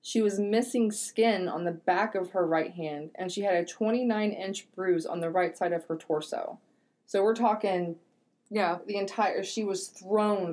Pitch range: 175-220 Hz